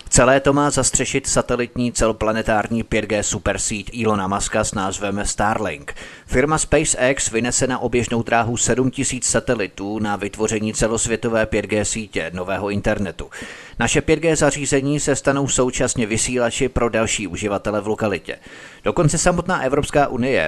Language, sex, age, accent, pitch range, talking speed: Czech, male, 30-49, native, 105-130 Hz, 130 wpm